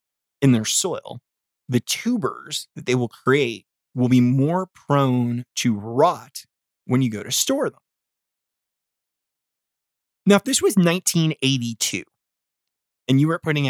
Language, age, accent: English, 30-49, American